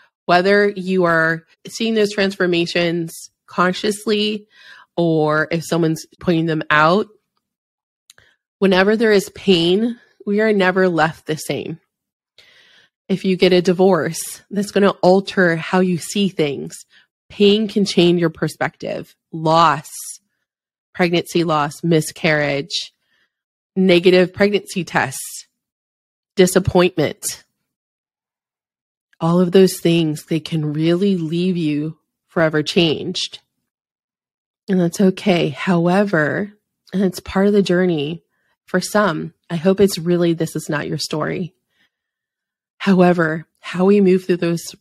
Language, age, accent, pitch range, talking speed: English, 20-39, American, 160-195 Hz, 115 wpm